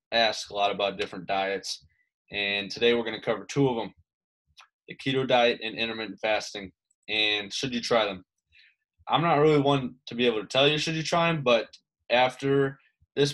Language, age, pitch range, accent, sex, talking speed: English, 20-39, 105-135 Hz, American, male, 195 wpm